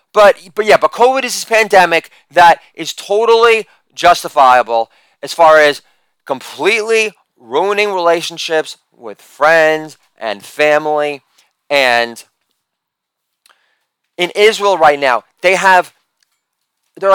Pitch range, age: 140-185 Hz, 30-49